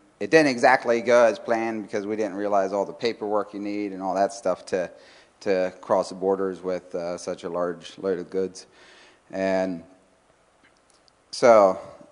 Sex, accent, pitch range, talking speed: male, American, 95-105 Hz, 170 wpm